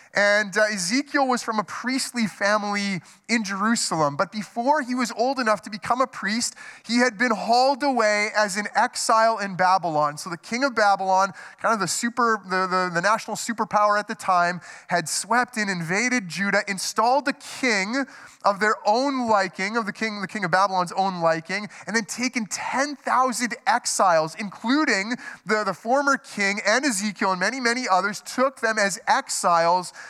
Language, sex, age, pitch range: English, male, 20-39, 205-270 Hz